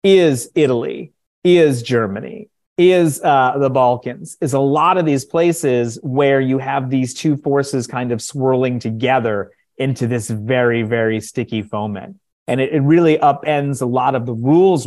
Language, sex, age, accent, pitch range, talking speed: English, male, 30-49, American, 115-145 Hz, 160 wpm